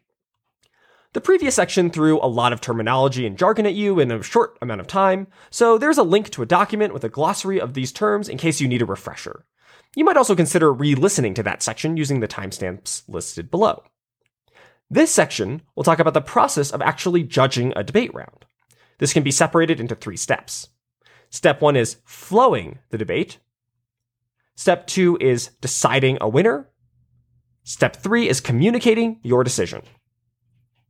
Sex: male